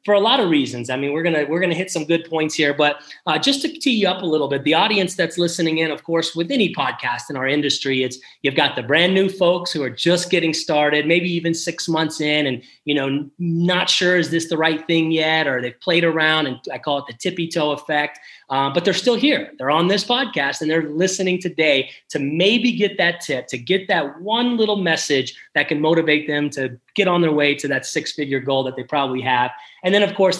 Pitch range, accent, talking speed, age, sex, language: 135-175 Hz, American, 245 wpm, 30-49, male, English